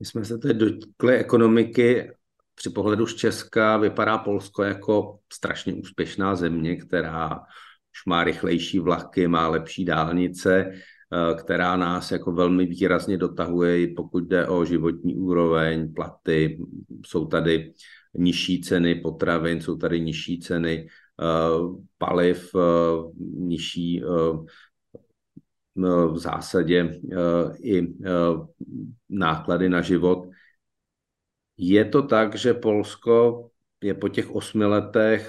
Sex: male